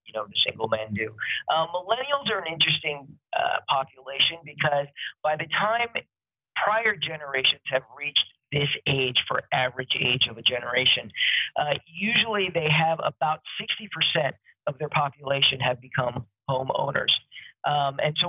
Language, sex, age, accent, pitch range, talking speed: English, male, 40-59, American, 125-160 Hz, 140 wpm